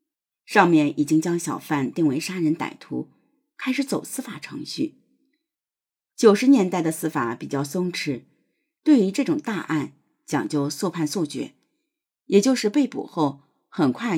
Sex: female